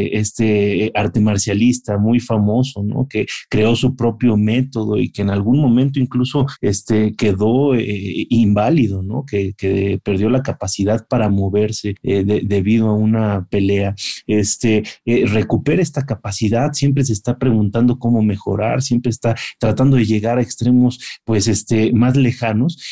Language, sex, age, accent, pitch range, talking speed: Spanish, male, 30-49, Mexican, 110-135 Hz, 150 wpm